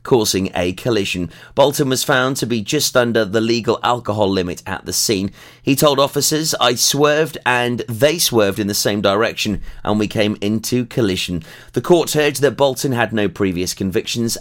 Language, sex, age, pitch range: English, male, 30-49, 105-135 Hz